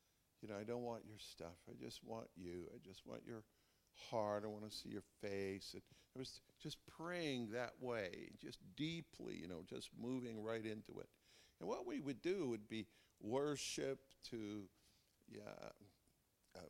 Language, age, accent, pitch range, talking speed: English, 50-69, American, 100-125 Hz, 170 wpm